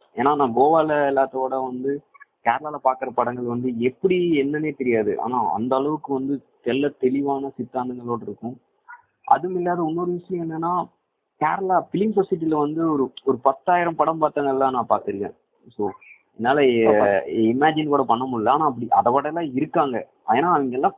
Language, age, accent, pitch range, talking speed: Tamil, 30-49, native, 120-160 Hz, 145 wpm